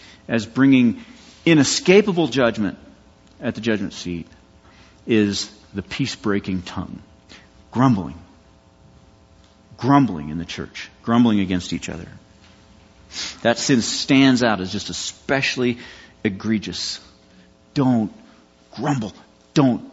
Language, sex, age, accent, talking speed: English, male, 50-69, American, 95 wpm